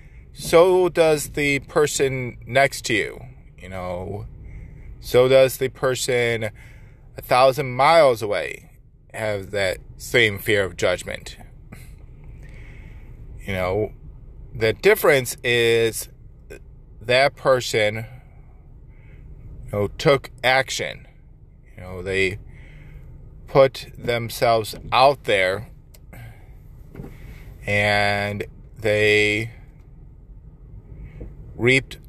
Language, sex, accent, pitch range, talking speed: English, male, American, 95-130 Hz, 80 wpm